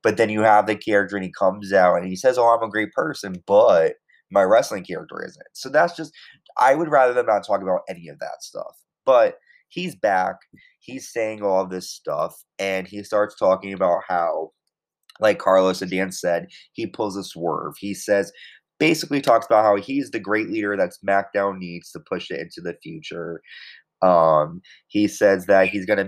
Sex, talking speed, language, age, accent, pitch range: male, 195 wpm, English, 20-39, American, 95-110 Hz